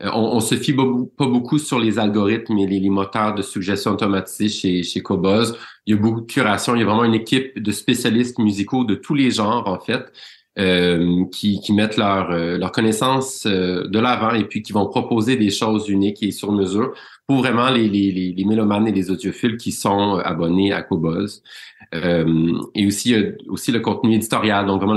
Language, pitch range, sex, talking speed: French, 95-115 Hz, male, 210 wpm